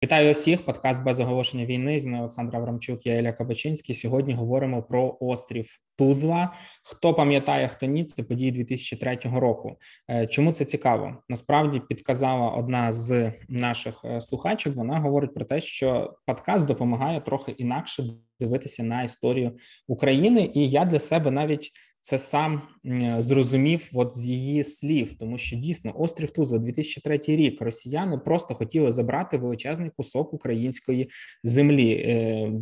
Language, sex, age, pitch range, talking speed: Ukrainian, male, 20-39, 115-145 Hz, 140 wpm